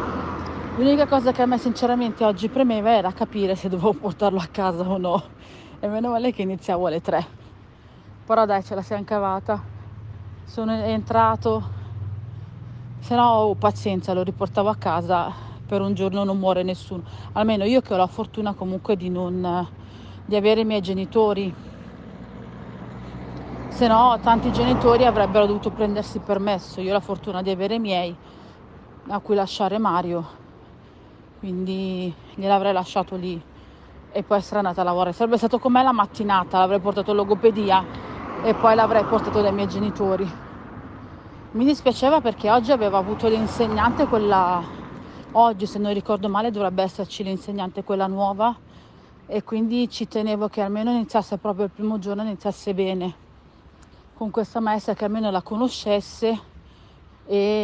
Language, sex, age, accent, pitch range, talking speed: Italian, female, 40-59, native, 185-220 Hz, 155 wpm